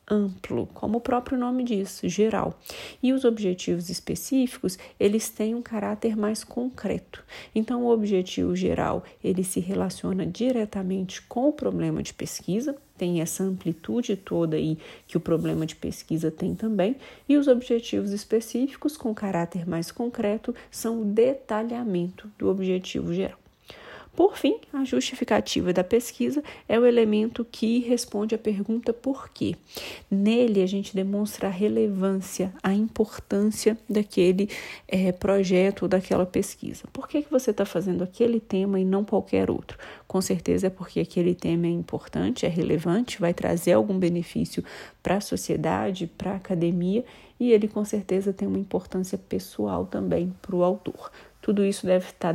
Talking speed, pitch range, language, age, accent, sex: 150 wpm, 180-230 Hz, Portuguese, 40-59, Brazilian, female